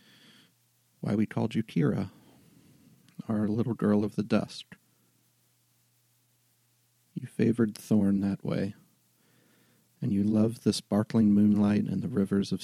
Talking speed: 125 wpm